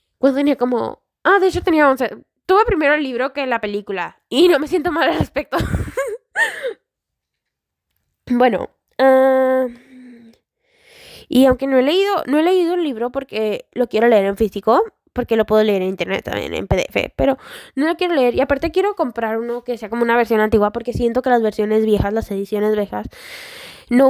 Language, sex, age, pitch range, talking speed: Spanish, female, 10-29, 210-275 Hz, 185 wpm